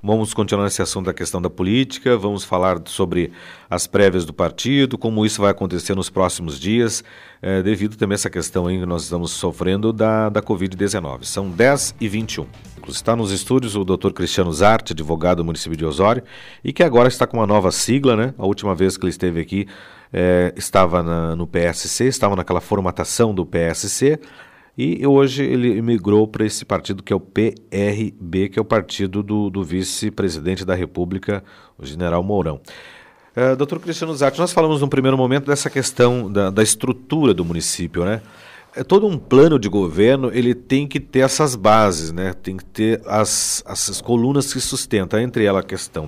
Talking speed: 190 wpm